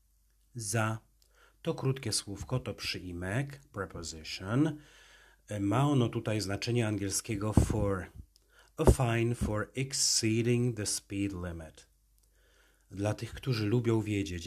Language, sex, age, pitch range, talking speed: Polish, male, 40-59, 95-120 Hz, 105 wpm